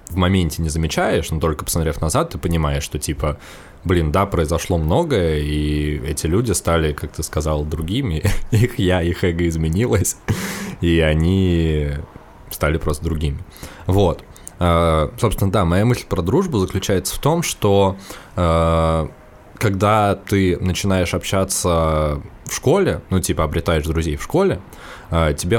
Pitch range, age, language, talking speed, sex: 80-100 Hz, 20-39, Russian, 135 wpm, male